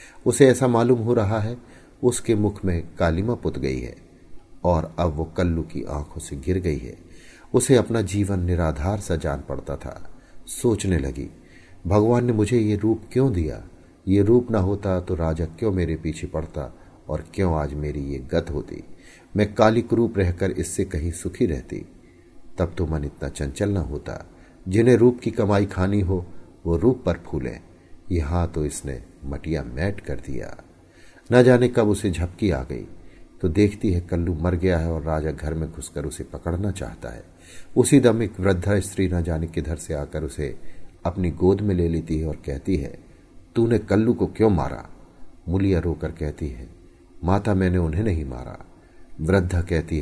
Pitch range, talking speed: 80-100 Hz, 180 wpm